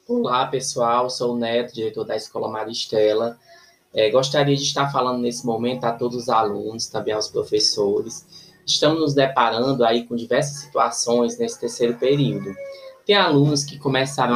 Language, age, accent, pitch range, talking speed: Portuguese, 20-39, Brazilian, 115-145 Hz, 150 wpm